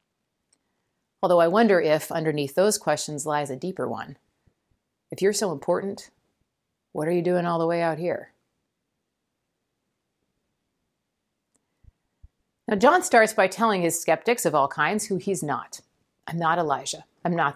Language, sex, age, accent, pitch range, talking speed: English, female, 40-59, American, 160-210 Hz, 145 wpm